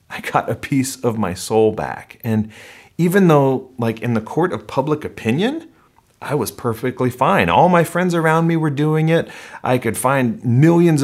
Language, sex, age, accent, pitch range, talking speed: English, male, 30-49, American, 105-140 Hz, 185 wpm